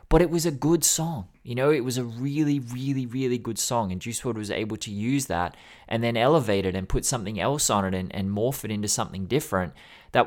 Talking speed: 245 wpm